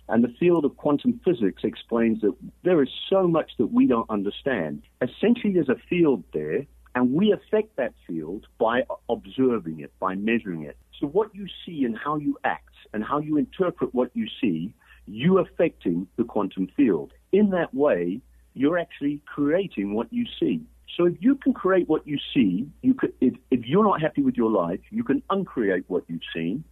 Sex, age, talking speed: male, 50-69, 190 wpm